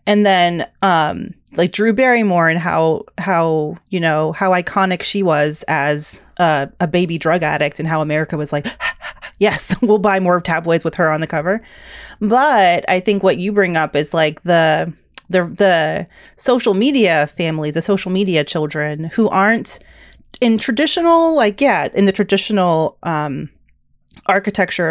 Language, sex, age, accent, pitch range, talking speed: English, female, 30-49, American, 160-210 Hz, 160 wpm